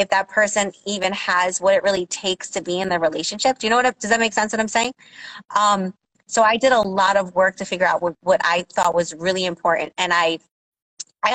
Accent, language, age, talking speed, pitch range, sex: American, English, 30-49, 250 wpm, 180-215 Hz, female